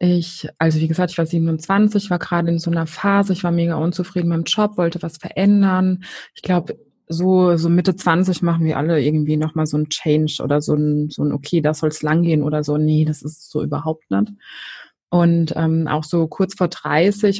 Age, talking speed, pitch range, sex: 20-39, 215 wpm, 160-195 Hz, female